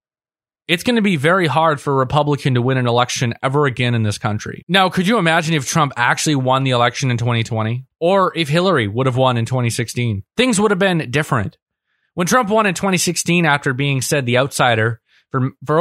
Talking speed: 210 wpm